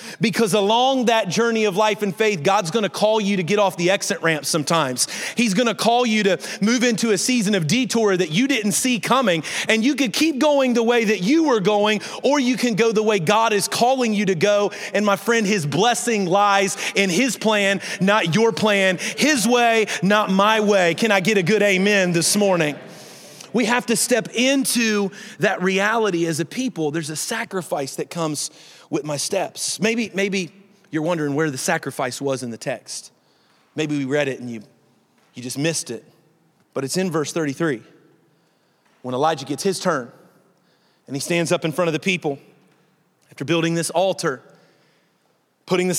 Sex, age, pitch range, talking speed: male, 30-49, 165-220 Hz, 190 wpm